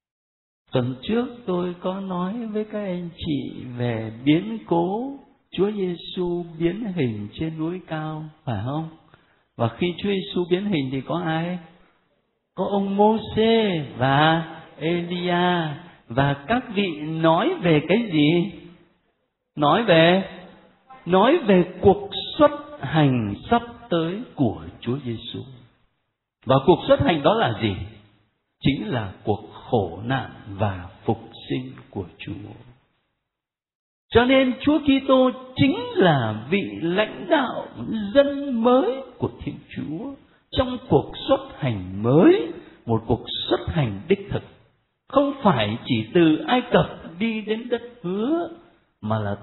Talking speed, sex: 130 wpm, male